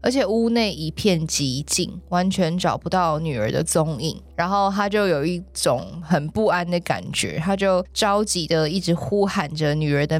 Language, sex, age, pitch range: Chinese, female, 20-39, 160-205 Hz